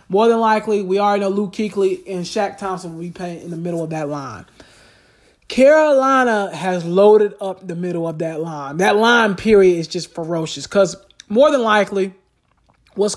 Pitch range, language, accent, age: 165-205 Hz, English, American, 20-39